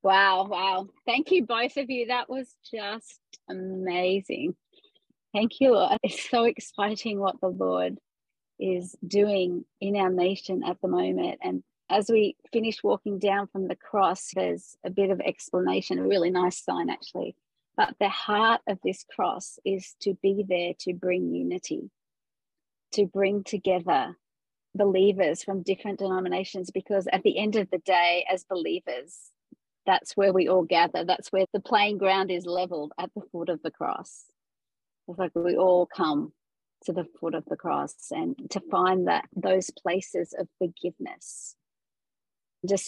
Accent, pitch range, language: Australian, 180-205 Hz, English